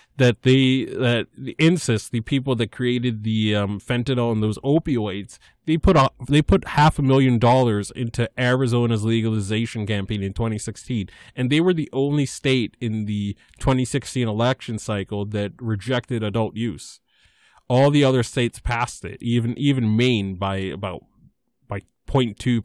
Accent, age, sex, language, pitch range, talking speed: American, 20-39, male, English, 105-130 Hz, 155 wpm